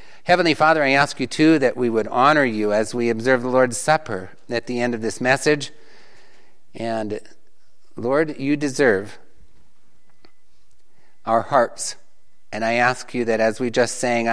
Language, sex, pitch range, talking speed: English, male, 115-145 Hz, 160 wpm